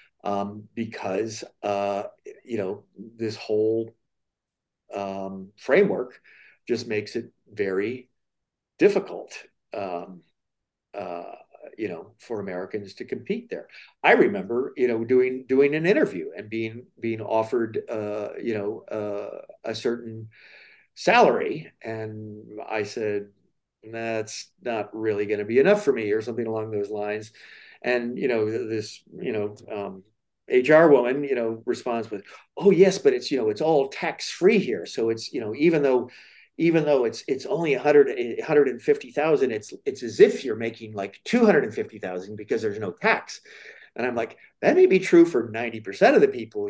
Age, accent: 50-69, American